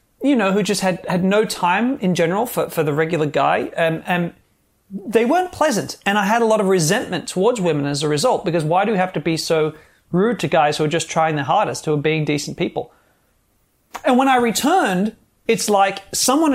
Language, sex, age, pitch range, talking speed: English, male, 30-49, 170-235 Hz, 220 wpm